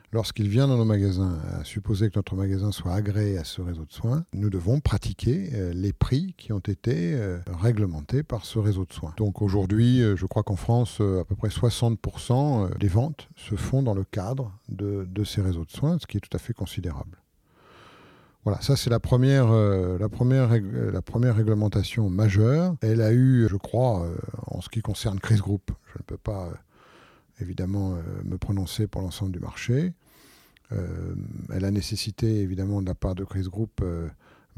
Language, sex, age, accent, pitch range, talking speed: French, male, 50-69, French, 95-120 Hz, 180 wpm